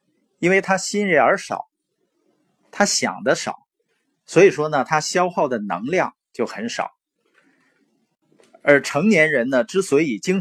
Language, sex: Chinese, male